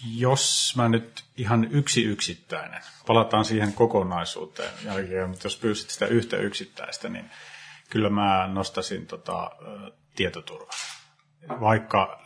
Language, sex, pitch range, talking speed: Finnish, male, 95-115 Hz, 115 wpm